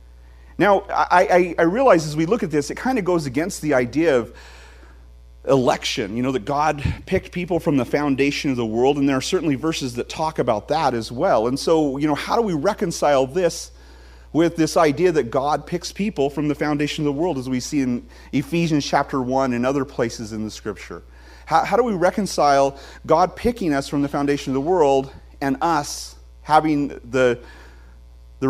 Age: 40-59